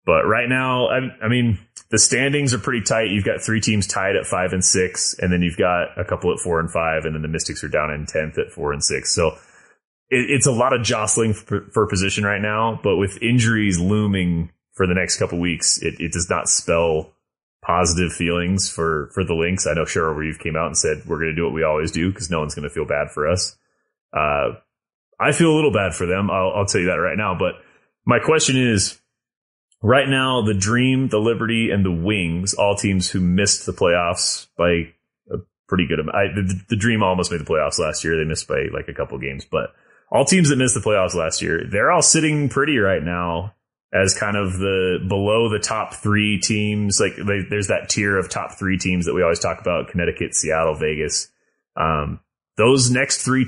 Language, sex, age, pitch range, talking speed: English, male, 30-49, 90-115 Hz, 225 wpm